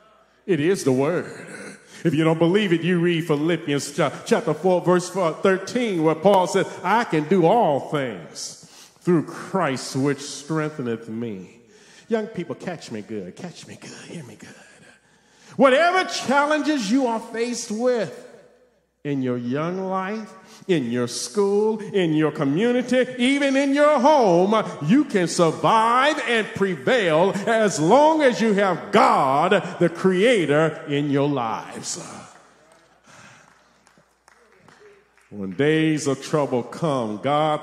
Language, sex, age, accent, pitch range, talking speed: English, male, 40-59, American, 135-215 Hz, 130 wpm